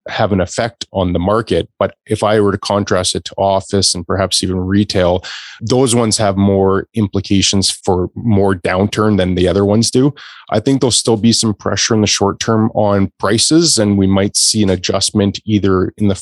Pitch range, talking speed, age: 95-110 Hz, 200 wpm, 20-39